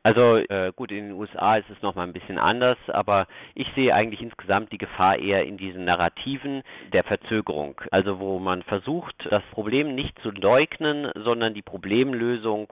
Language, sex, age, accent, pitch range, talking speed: German, male, 40-59, German, 100-125 Hz, 175 wpm